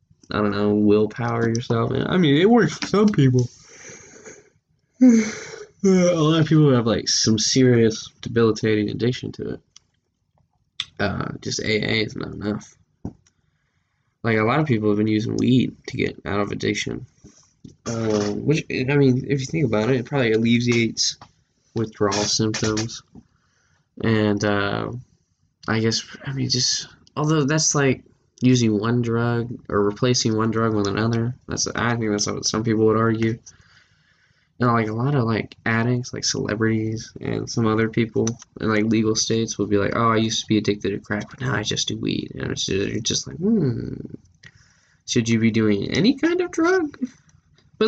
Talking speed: 170 wpm